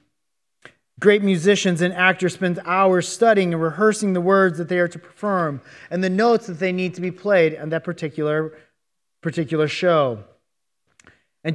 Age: 30-49